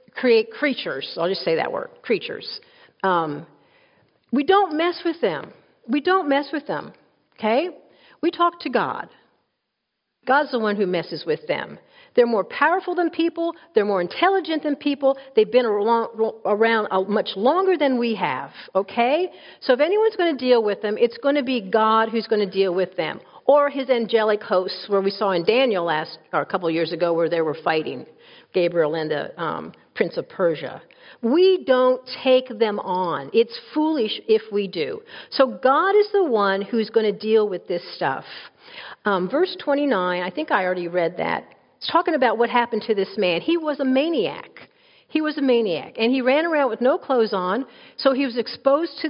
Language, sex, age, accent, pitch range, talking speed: English, female, 50-69, American, 205-325 Hz, 190 wpm